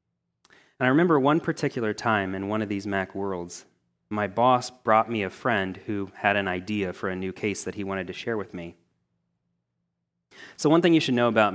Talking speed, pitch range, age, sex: 210 wpm, 90-115 Hz, 30-49, male